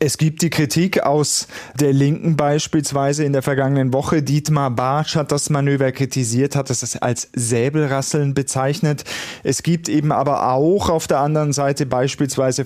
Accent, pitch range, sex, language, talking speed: German, 130-145 Hz, male, German, 155 wpm